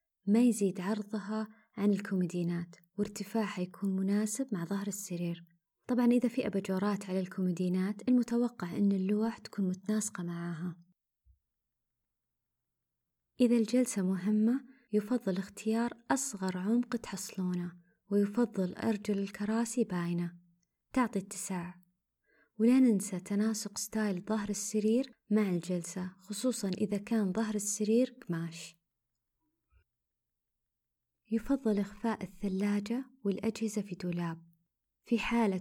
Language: Arabic